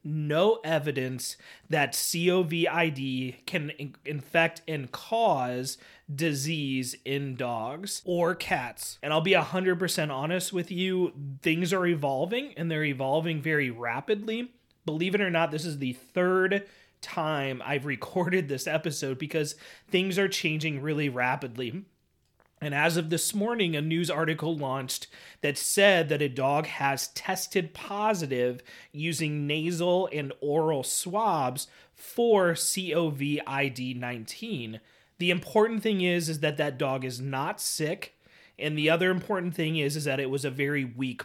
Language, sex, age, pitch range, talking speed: English, male, 30-49, 140-185 Hz, 140 wpm